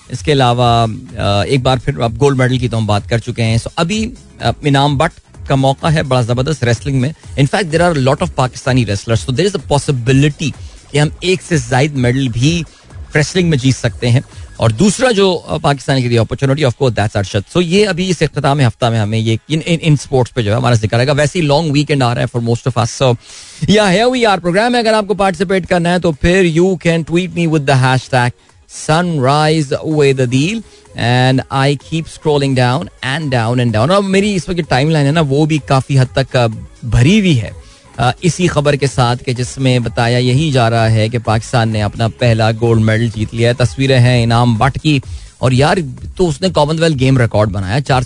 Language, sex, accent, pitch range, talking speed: Hindi, male, native, 120-155 Hz, 195 wpm